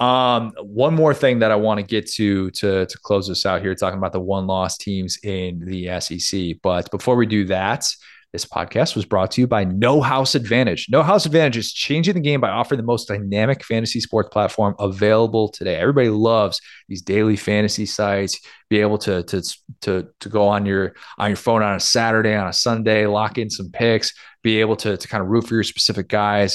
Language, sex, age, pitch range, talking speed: English, male, 30-49, 100-125 Hz, 215 wpm